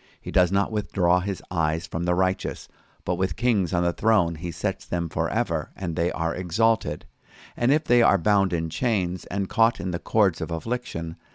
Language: English